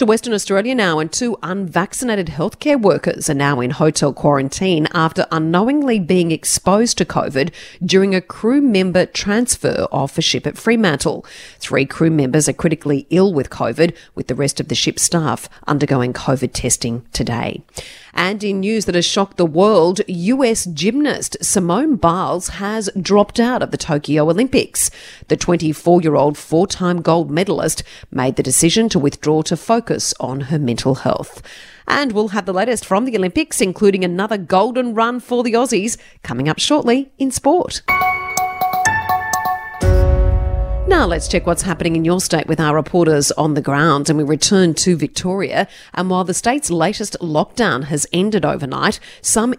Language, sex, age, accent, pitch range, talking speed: English, female, 40-59, Australian, 150-205 Hz, 165 wpm